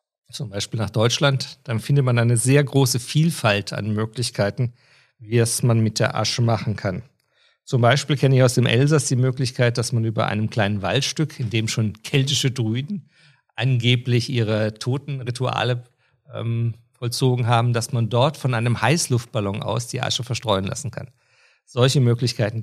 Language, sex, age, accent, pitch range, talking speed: German, male, 50-69, German, 115-135 Hz, 160 wpm